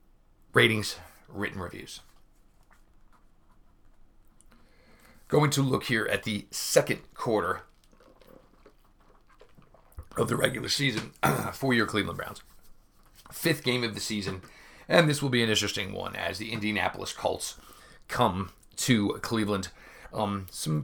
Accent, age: American, 40-59